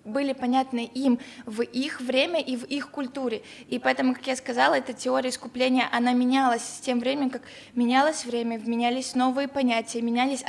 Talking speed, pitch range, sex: 170 wpm, 240-270 Hz, female